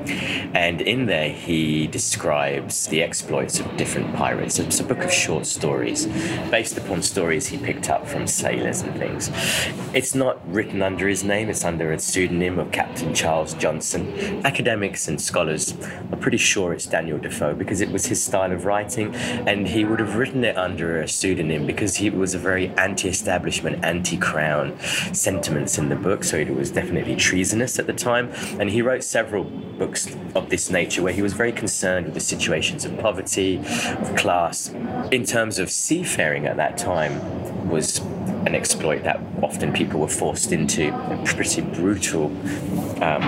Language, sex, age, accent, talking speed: English, male, 20-39, British, 170 wpm